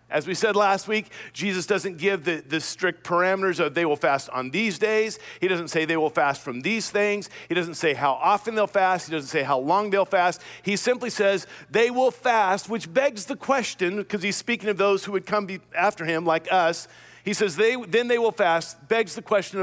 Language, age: English, 50-69